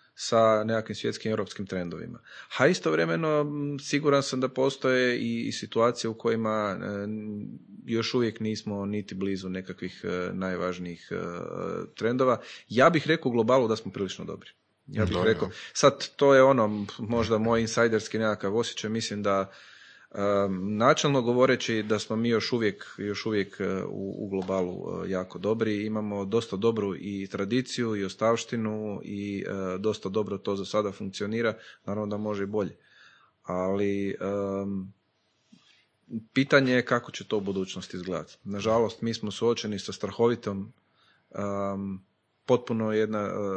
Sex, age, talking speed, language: male, 30-49, 130 wpm, Croatian